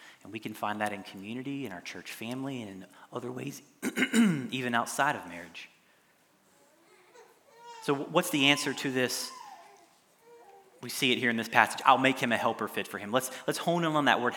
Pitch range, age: 115-150 Hz, 30-49